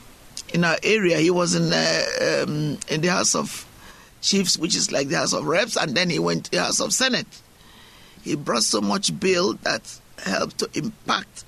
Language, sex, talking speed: English, male, 200 wpm